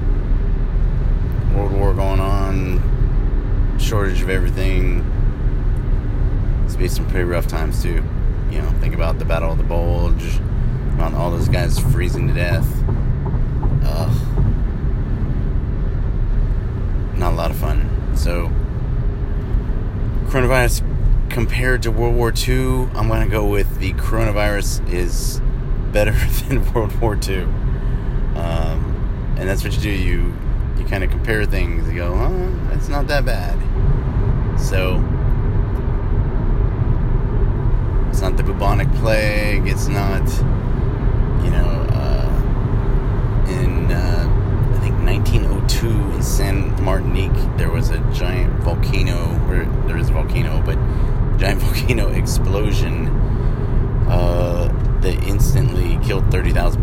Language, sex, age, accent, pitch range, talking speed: English, male, 30-49, American, 100-120 Hz, 120 wpm